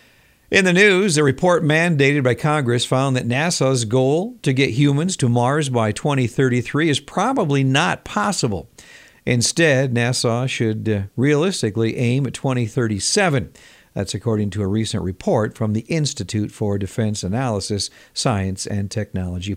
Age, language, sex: 50-69, Japanese, male